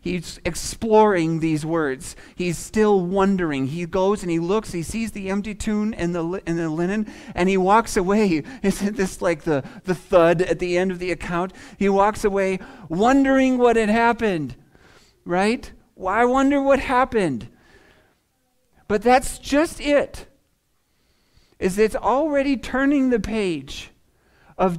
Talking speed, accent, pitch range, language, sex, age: 150 wpm, American, 180-255 Hz, English, male, 40-59